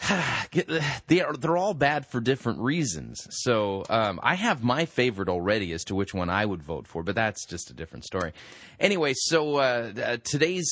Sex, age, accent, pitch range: male, 30-49, American, 100-145 Hz